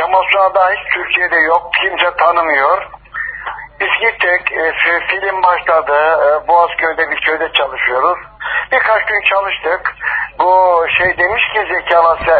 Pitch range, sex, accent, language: 165-210 Hz, male, native, Turkish